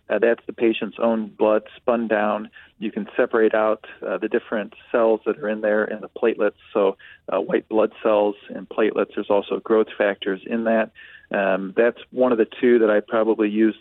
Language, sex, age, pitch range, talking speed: English, male, 40-59, 105-115 Hz, 200 wpm